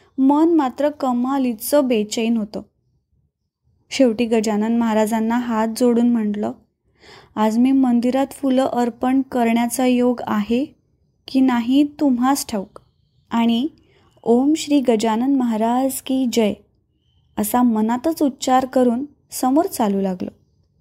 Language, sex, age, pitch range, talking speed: Marathi, female, 20-39, 235-295 Hz, 105 wpm